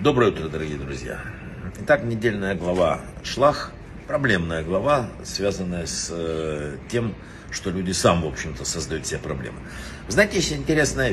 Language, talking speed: Russian, 140 wpm